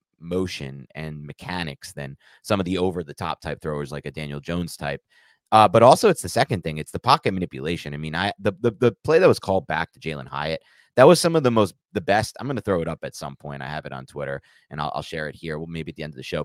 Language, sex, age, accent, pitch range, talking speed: English, male, 30-49, American, 75-100 Hz, 285 wpm